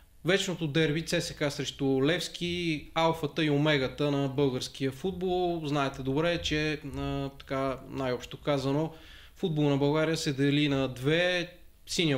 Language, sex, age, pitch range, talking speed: Bulgarian, male, 20-39, 135-165 Hz, 130 wpm